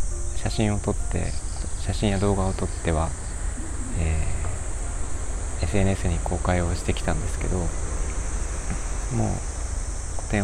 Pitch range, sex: 80-100 Hz, male